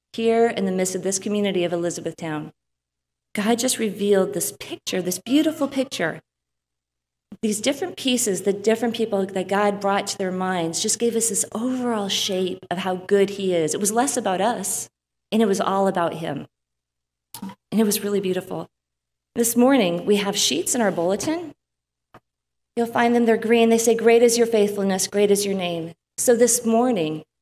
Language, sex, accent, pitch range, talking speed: English, female, American, 165-215 Hz, 180 wpm